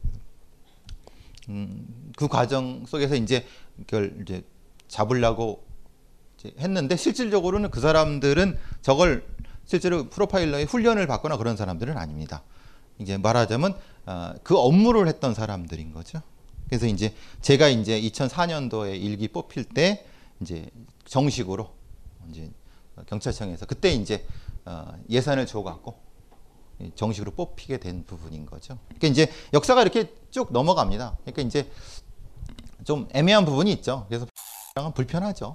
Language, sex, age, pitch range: Korean, male, 40-59, 105-155 Hz